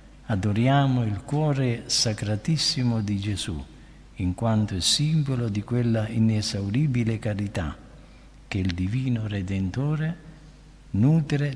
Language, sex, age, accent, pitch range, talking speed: Italian, male, 60-79, native, 95-130 Hz, 100 wpm